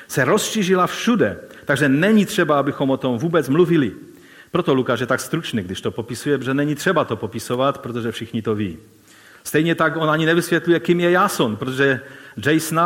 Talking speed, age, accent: 175 wpm, 40-59, native